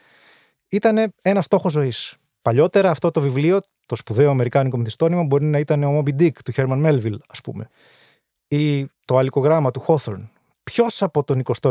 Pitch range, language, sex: 120-150 Hz, Greek, male